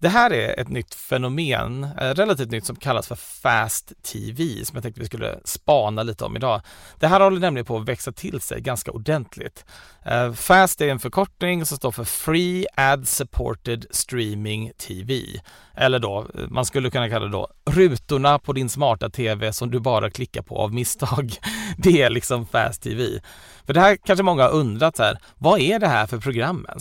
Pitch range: 115-155 Hz